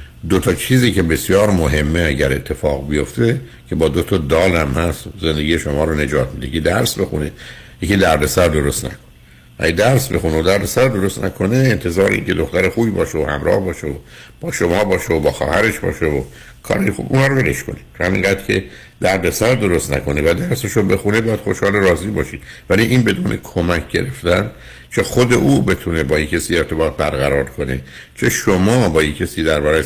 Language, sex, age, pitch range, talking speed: Persian, male, 60-79, 75-100 Hz, 180 wpm